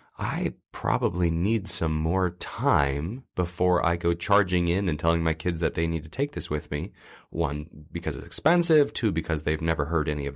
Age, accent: 30-49, American